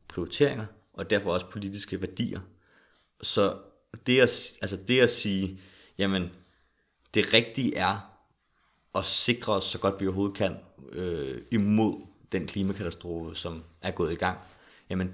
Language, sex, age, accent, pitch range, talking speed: Danish, male, 30-49, native, 95-110 Hz, 140 wpm